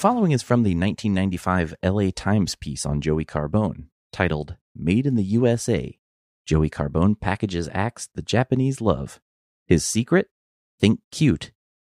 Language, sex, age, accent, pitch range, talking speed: English, male, 30-49, American, 75-110 Hz, 140 wpm